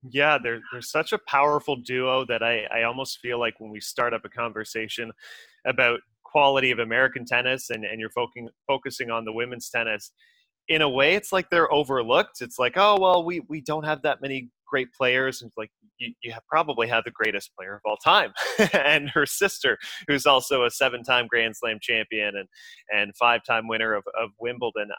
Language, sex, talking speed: English, male, 190 wpm